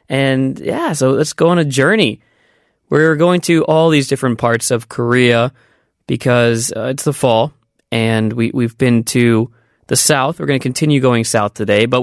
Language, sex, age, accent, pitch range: Korean, male, 20-39, American, 115-145 Hz